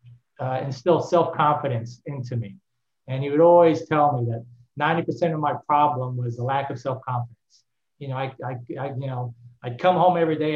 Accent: American